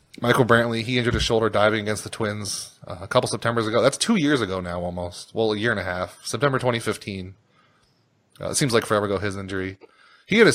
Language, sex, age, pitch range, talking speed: English, male, 30-49, 105-130 Hz, 220 wpm